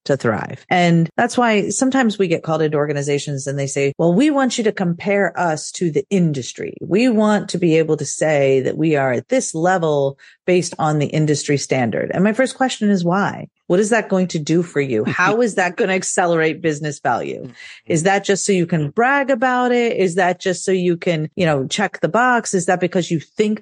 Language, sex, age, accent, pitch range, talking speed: English, female, 40-59, American, 160-215 Hz, 225 wpm